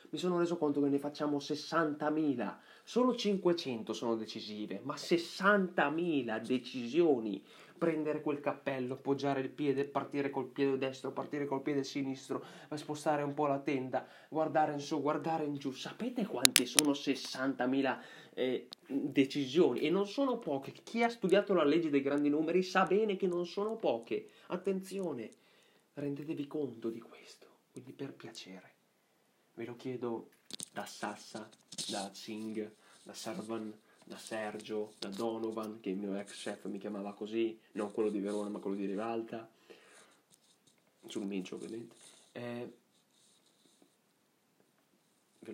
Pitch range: 115-160 Hz